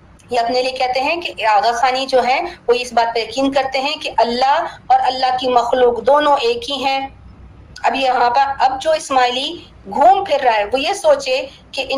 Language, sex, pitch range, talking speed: Urdu, female, 245-295 Hz, 205 wpm